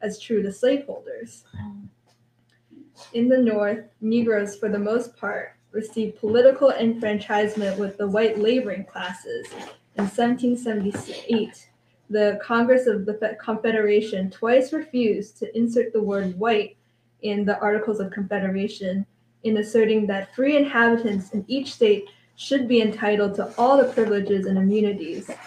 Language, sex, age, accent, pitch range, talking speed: English, female, 10-29, American, 205-235 Hz, 130 wpm